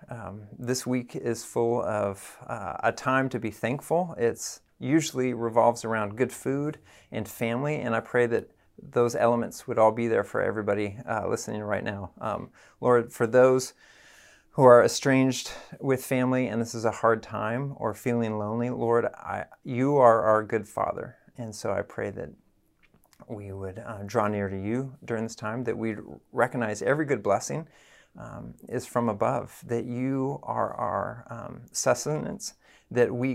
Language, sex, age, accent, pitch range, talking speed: English, male, 40-59, American, 105-120 Hz, 170 wpm